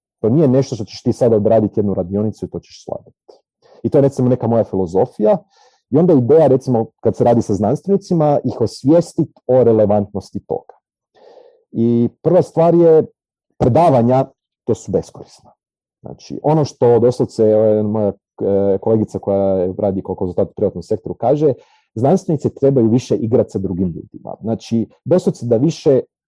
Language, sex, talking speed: Croatian, male, 160 wpm